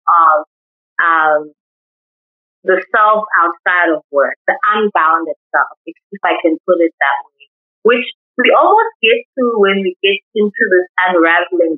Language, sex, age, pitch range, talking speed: English, female, 30-49, 160-205 Hz, 150 wpm